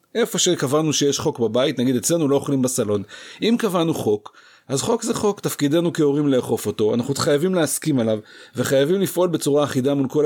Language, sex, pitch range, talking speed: Hebrew, male, 130-185 Hz, 180 wpm